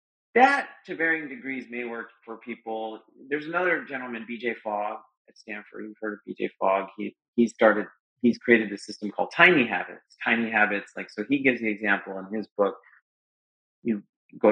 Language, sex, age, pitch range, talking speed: English, male, 30-49, 110-145 Hz, 180 wpm